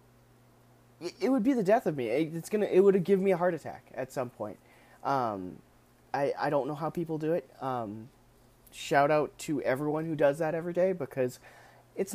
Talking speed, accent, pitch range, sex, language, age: 200 wpm, American, 120-145 Hz, male, English, 30-49